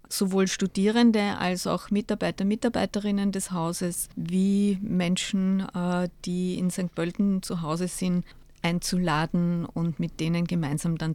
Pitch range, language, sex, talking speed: 175-205 Hz, German, female, 125 wpm